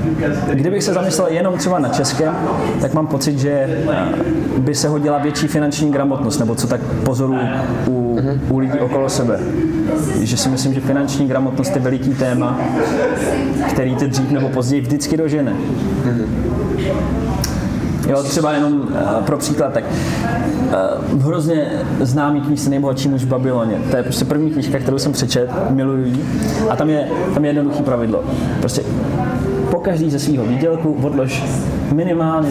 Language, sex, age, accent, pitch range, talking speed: Czech, male, 20-39, native, 130-150 Hz, 150 wpm